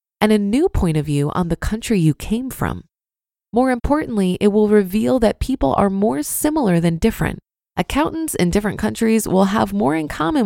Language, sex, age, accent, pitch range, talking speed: English, female, 20-39, American, 175-230 Hz, 190 wpm